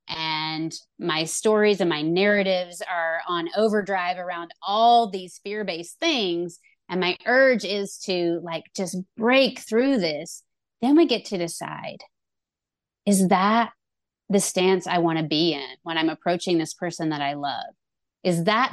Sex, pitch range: female, 165-205 Hz